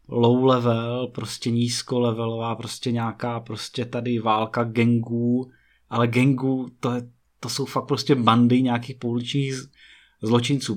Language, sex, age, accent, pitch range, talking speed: Czech, male, 20-39, native, 110-130 Hz, 115 wpm